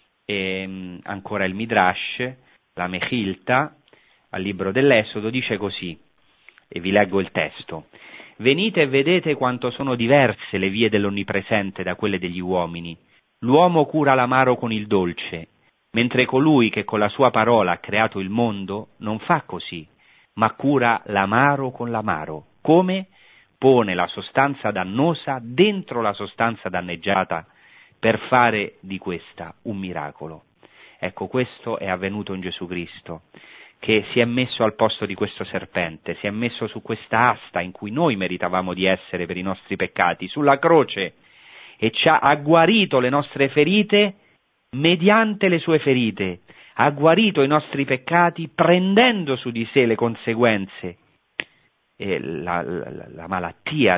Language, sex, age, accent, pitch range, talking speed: Italian, male, 40-59, native, 95-135 Hz, 145 wpm